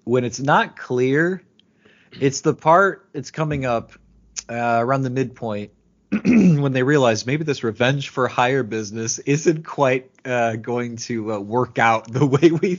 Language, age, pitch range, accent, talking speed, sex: English, 30-49, 110-140 Hz, American, 160 wpm, male